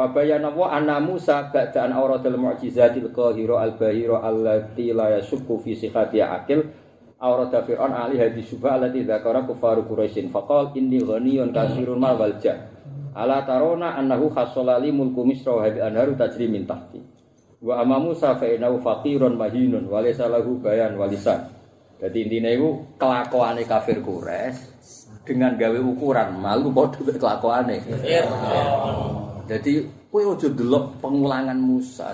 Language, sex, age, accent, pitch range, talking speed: Indonesian, male, 40-59, native, 115-145 Hz, 45 wpm